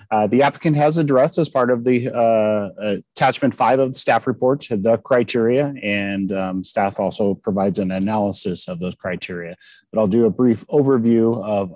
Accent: American